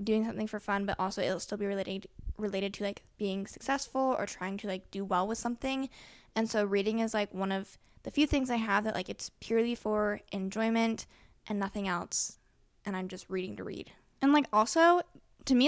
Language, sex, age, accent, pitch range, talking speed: English, female, 10-29, American, 200-245 Hz, 210 wpm